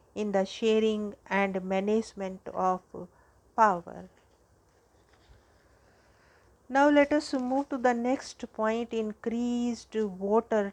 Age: 50-69